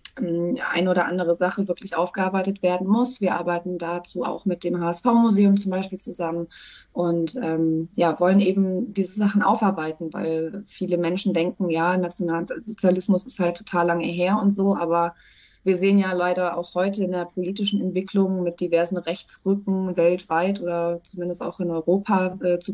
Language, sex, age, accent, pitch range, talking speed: German, female, 20-39, German, 170-195 Hz, 160 wpm